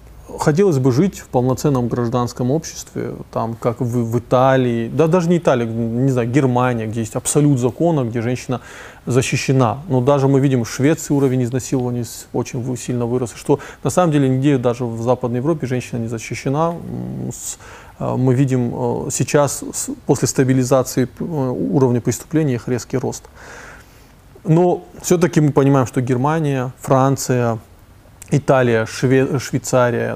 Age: 20-39